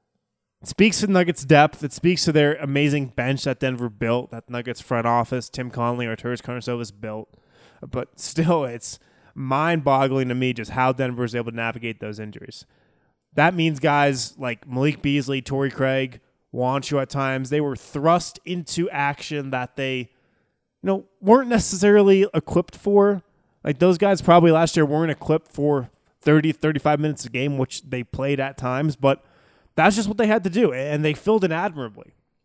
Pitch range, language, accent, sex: 125-165 Hz, English, American, male